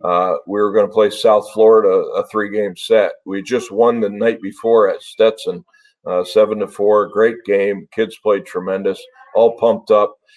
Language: English